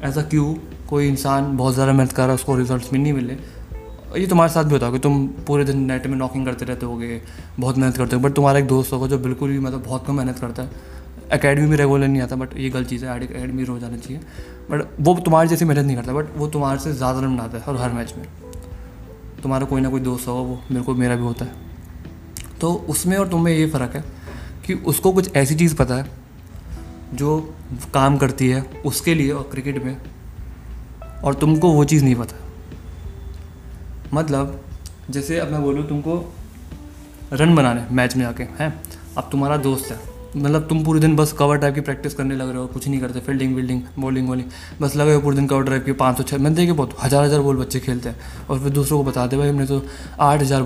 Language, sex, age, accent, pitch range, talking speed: Hindi, male, 20-39, native, 120-145 Hz, 225 wpm